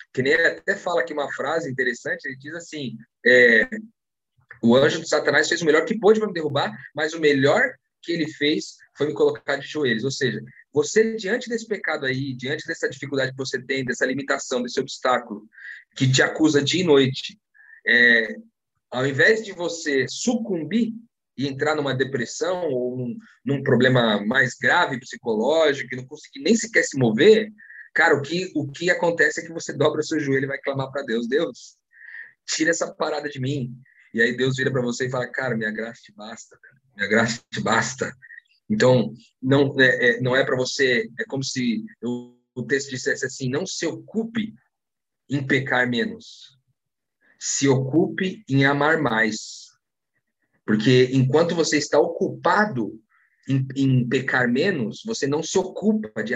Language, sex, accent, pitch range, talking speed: Portuguese, male, Brazilian, 130-170 Hz, 175 wpm